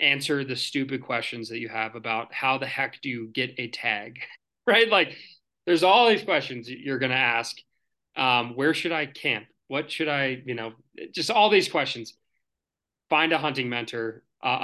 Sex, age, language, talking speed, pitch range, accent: male, 20-39, English, 180 wpm, 125-165 Hz, American